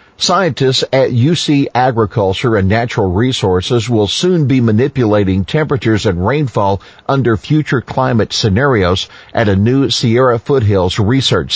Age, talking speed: 50-69, 125 wpm